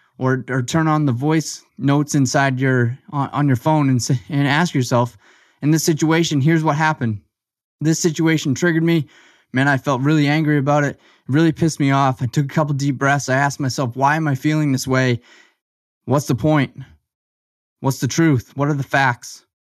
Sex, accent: male, American